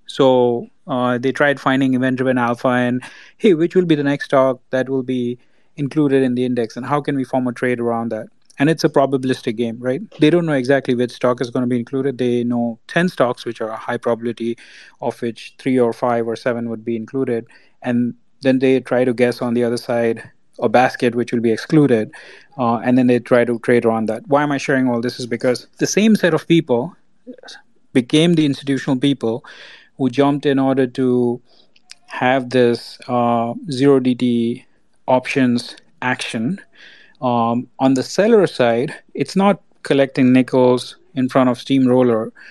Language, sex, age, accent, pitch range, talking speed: English, male, 30-49, Indian, 120-135 Hz, 190 wpm